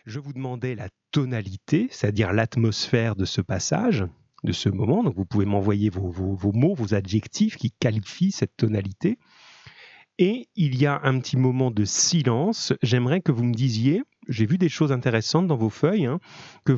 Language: French